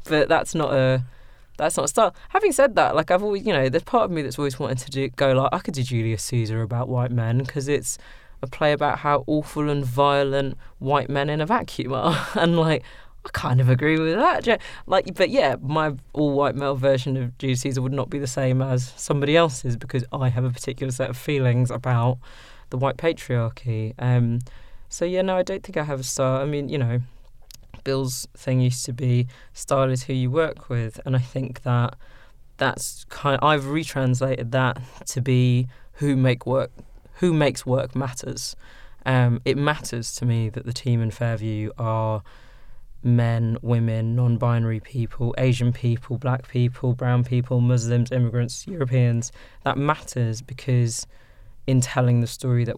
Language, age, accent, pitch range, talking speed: English, 20-39, British, 120-140 Hz, 190 wpm